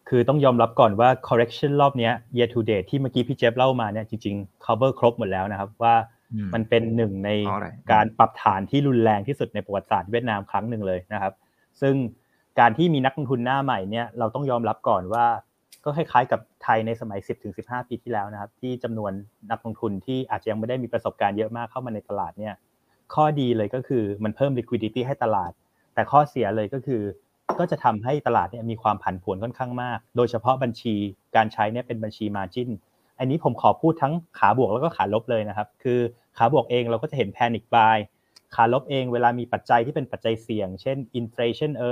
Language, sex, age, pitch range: Thai, male, 20-39, 110-130 Hz